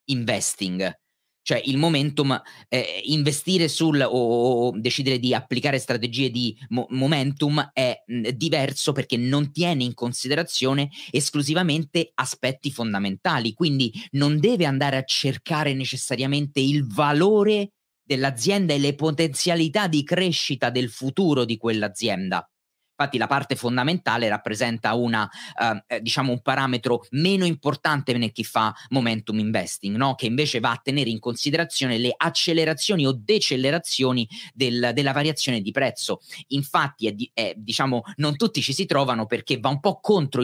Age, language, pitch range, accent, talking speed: 30-49, Italian, 120-160 Hz, native, 140 wpm